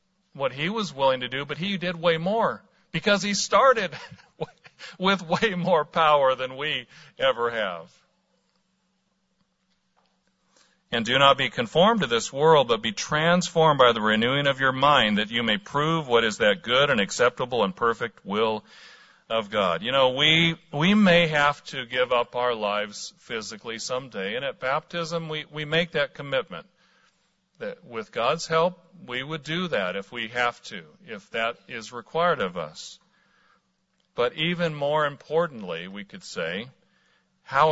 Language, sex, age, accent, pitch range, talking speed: English, male, 50-69, American, 125-180 Hz, 160 wpm